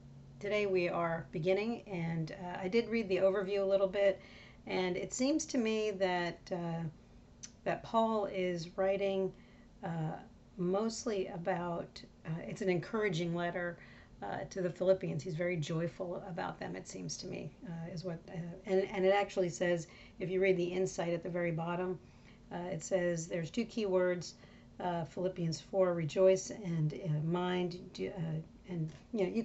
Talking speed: 165 wpm